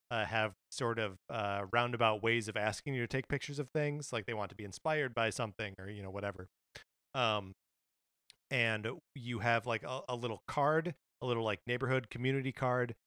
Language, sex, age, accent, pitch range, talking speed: English, male, 30-49, American, 105-130 Hz, 195 wpm